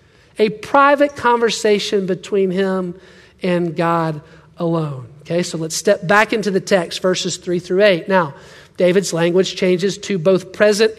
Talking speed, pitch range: 145 wpm, 190-245 Hz